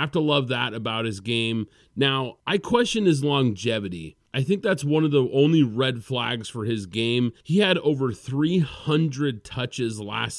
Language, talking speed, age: English, 180 wpm, 30-49